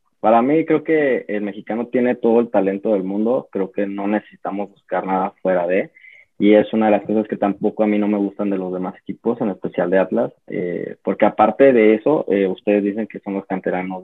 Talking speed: 225 wpm